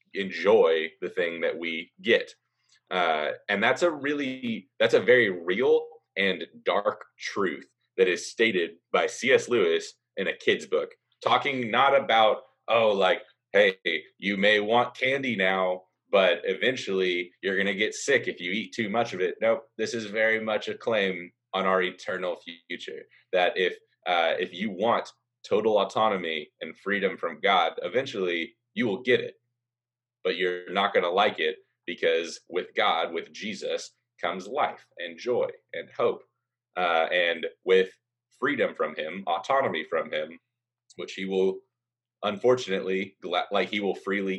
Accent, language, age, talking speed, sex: American, English, 20-39, 160 wpm, male